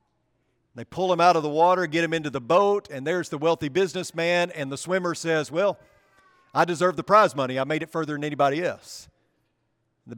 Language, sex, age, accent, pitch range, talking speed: English, male, 40-59, American, 150-200 Hz, 205 wpm